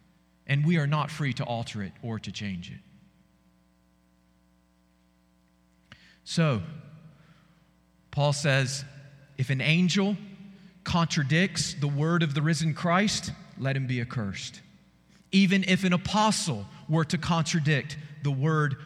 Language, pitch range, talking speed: English, 100-150 Hz, 120 wpm